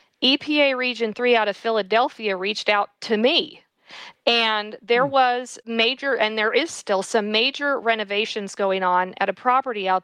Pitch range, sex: 195-235 Hz, female